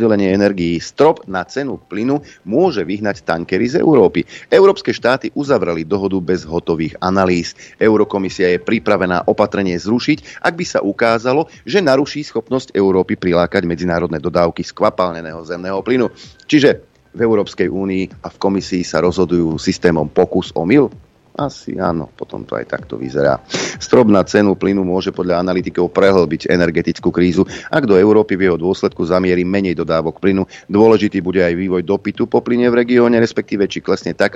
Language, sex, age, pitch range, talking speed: Slovak, male, 30-49, 85-105 Hz, 155 wpm